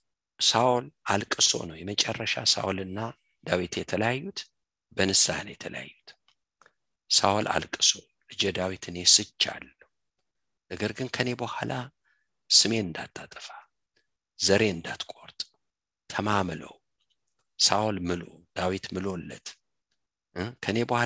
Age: 50-69